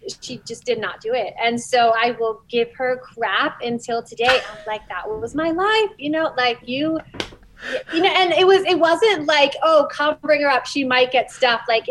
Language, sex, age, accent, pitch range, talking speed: English, female, 30-49, American, 235-325 Hz, 215 wpm